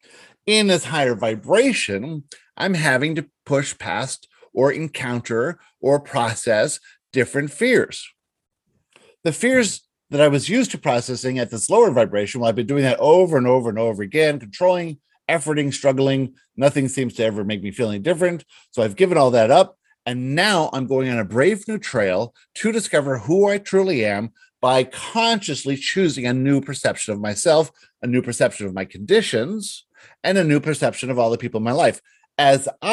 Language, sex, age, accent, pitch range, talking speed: English, male, 50-69, American, 125-175 Hz, 175 wpm